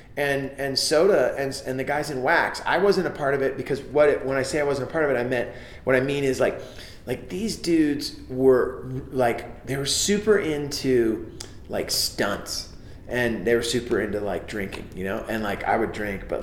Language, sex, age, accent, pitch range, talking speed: English, male, 30-49, American, 110-140 Hz, 220 wpm